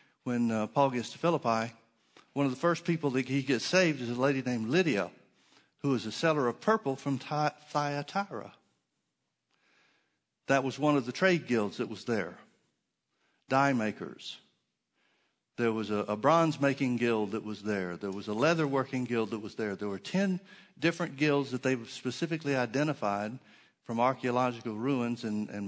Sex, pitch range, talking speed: male, 115-145 Hz, 170 wpm